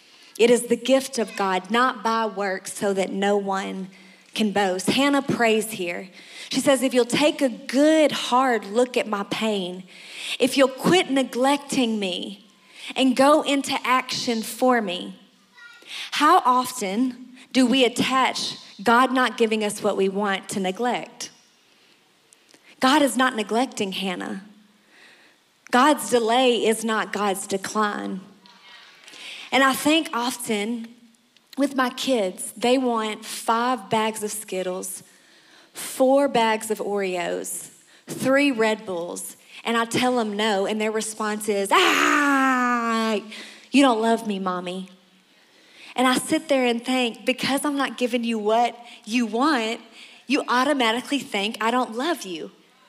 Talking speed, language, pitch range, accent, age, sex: 140 wpm, English, 210-255 Hz, American, 30-49, female